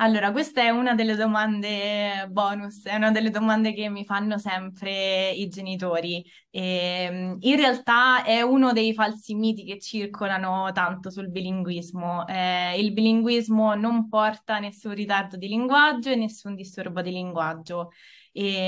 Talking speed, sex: 135 wpm, female